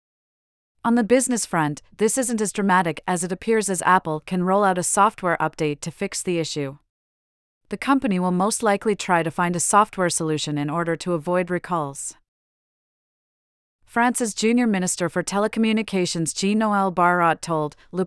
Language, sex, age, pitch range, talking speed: English, female, 30-49, 160-200 Hz, 160 wpm